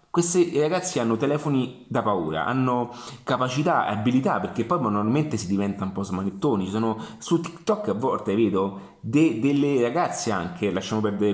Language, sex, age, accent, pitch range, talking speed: Italian, male, 30-49, native, 110-145 Hz, 160 wpm